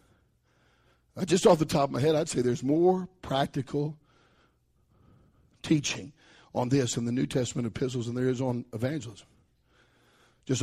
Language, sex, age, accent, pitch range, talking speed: English, male, 60-79, American, 130-220 Hz, 145 wpm